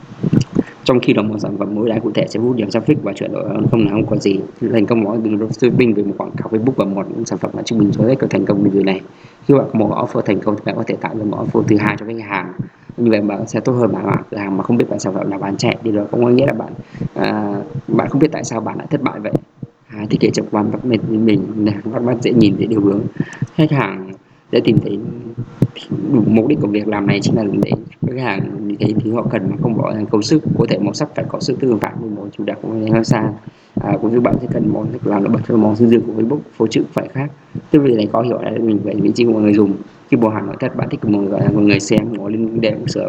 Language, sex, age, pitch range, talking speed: Vietnamese, male, 20-39, 105-120 Hz, 285 wpm